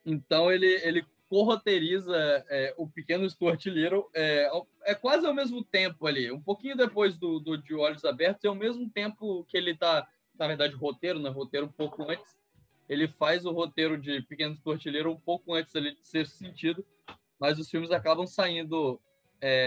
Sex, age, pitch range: male, 10-29, 145-190 Hz